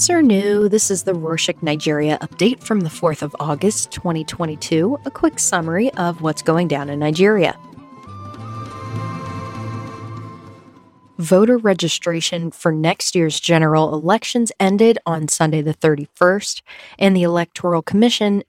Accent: American